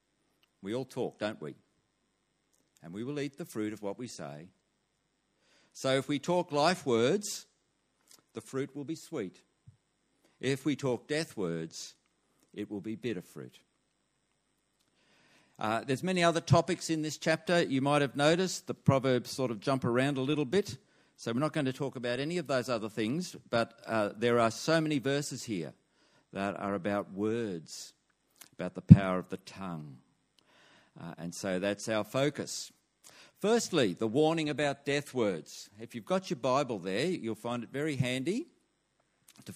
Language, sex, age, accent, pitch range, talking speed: English, male, 50-69, Australian, 110-145 Hz, 170 wpm